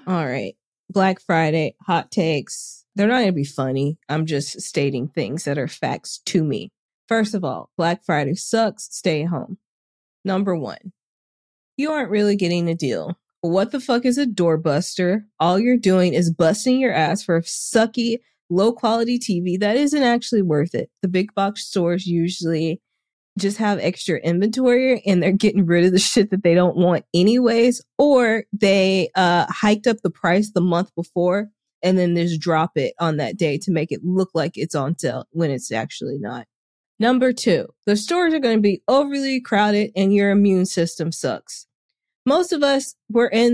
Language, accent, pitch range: English, American, 170-225 Hz